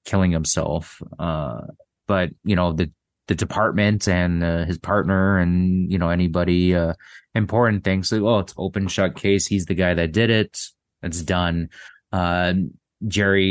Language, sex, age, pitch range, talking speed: English, male, 20-39, 85-95 Hz, 165 wpm